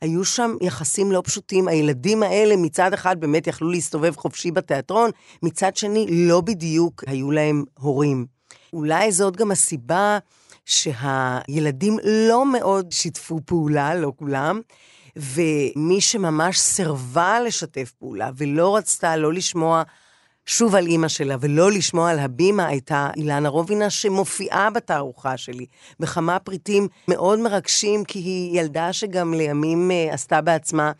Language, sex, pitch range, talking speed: Hebrew, female, 155-195 Hz, 130 wpm